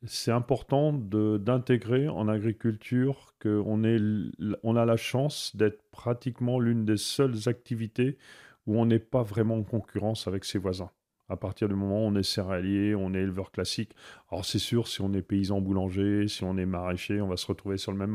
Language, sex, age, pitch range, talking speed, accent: French, male, 40-59, 105-130 Hz, 190 wpm, French